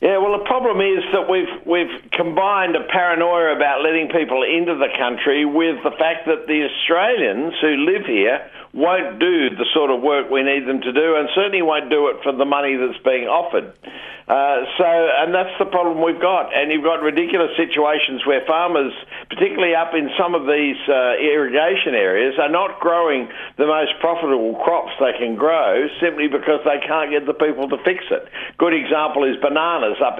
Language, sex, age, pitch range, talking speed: English, male, 60-79, 140-170 Hz, 195 wpm